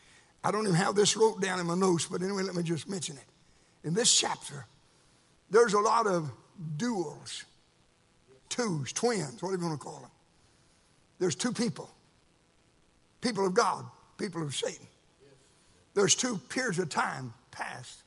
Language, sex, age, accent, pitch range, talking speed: English, male, 60-79, American, 165-225 Hz, 160 wpm